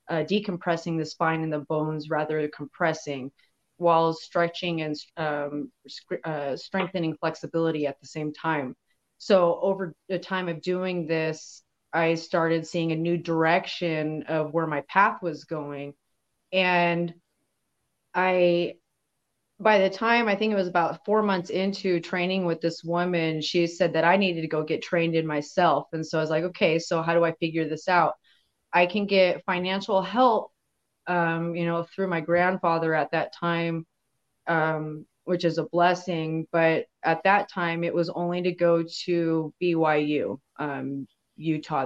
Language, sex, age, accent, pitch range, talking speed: English, female, 30-49, American, 155-180 Hz, 160 wpm